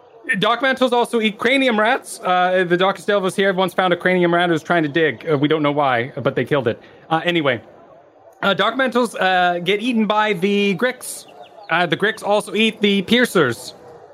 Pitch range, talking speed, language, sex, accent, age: 145-205 Hz, 200 wpm, English, male, American, 30-49